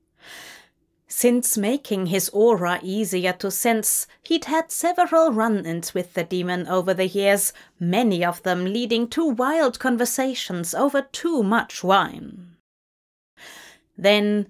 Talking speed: 120 wpm